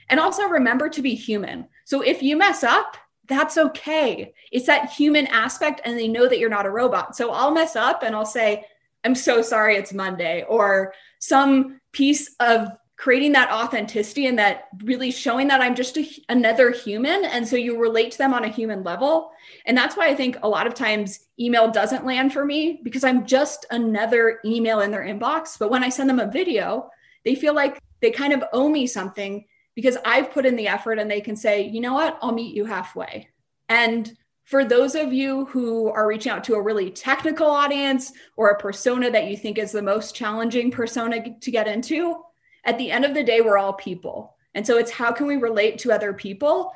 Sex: female